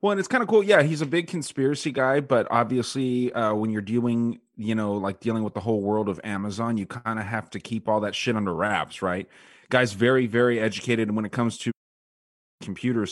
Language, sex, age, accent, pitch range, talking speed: English, male, 30-49, American, 105-130 Hz, 225 wpm